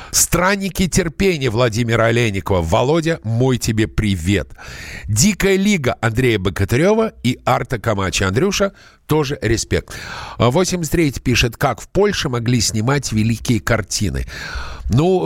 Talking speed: 110 wpm